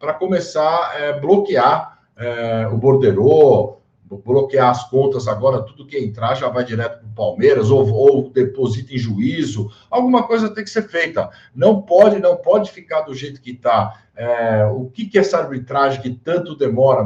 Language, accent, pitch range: Portuguese, Brazilian, 120-180 Hz